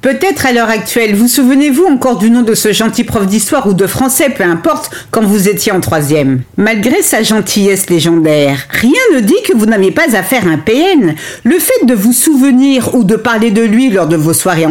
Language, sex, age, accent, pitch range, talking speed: French, female, 50-69, French, 195-285 Hz, 225 wpm